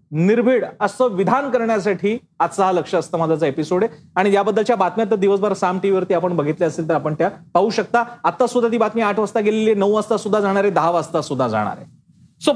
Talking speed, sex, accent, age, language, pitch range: 155 wpm, male, native, 40-59, Marathi, 180-230 Hz